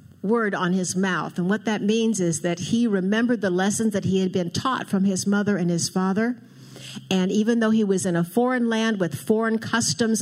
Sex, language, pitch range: female, English, 170-220 Hz